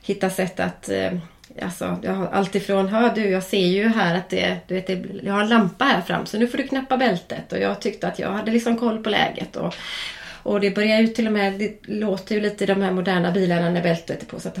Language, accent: Swedish, native